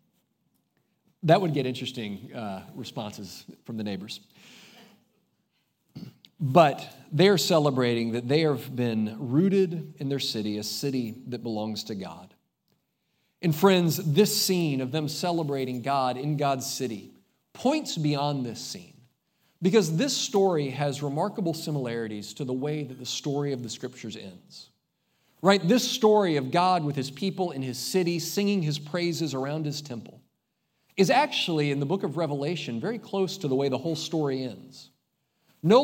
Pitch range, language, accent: 125-175 Hz, English, American